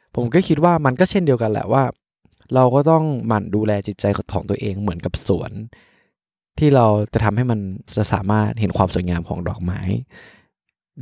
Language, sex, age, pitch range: Thai, male, 20-39, 95-115 Hz